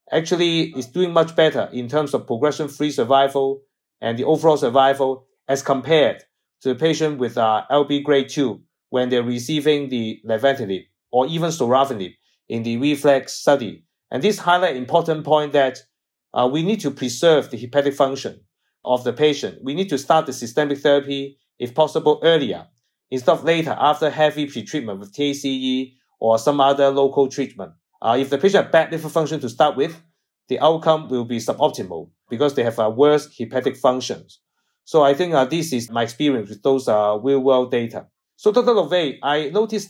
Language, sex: English, male